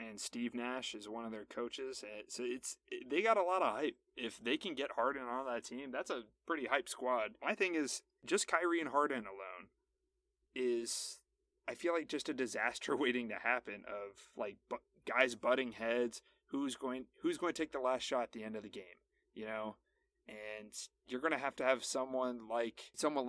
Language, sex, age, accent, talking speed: English, male, 20-39, American, 205 wpm